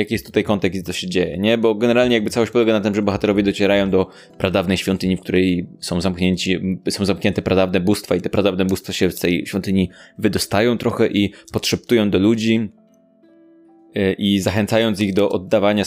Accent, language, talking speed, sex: native, Polish, 180 wpm, male